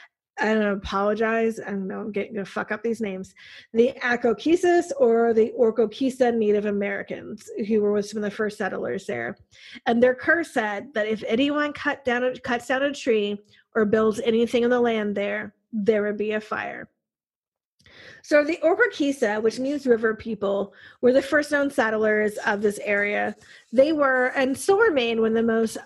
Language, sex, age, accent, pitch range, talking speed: English, female, 30-49, American, 215-265 Hz, 185 wpm